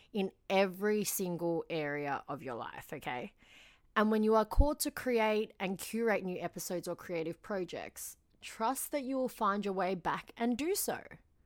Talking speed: 175 wpm